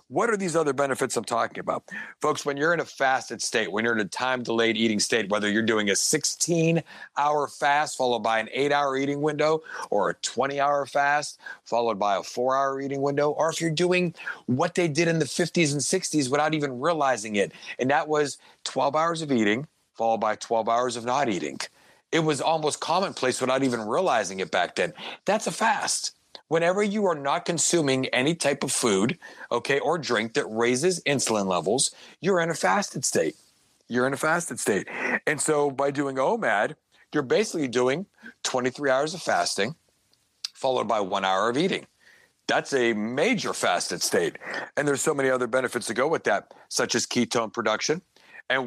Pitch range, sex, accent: 125-160 Hz, male, American